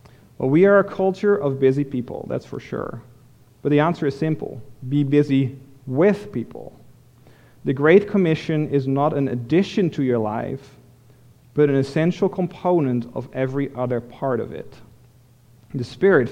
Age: 40-59